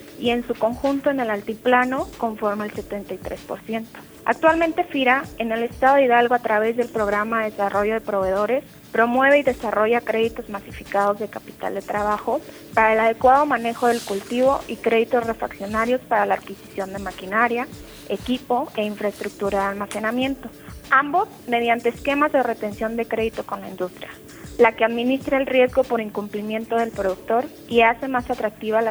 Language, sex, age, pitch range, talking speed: Spanish, female, 30-49, 210-250 Hz, 160 wpm